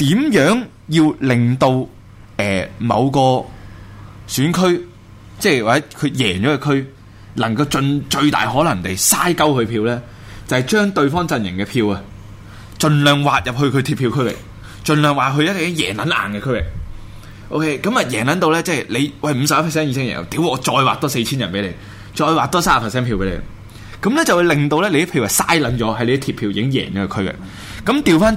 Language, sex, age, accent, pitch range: Chinese, male, 20-39, native, 100-145 Hz